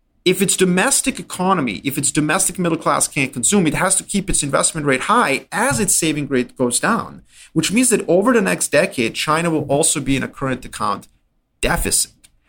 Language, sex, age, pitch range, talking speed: English, male, 30-49, 135-185 Hz, 195 wpm